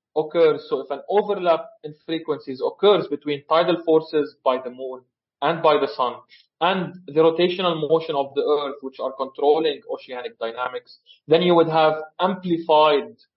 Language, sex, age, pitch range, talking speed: English, male, 30-49, 145-175 Hz, 155 wpm